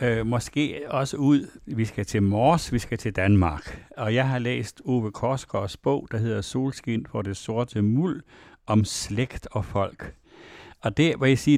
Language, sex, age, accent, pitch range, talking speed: Danish, male, 60-79, native, 105-130 Hz, 180 wpm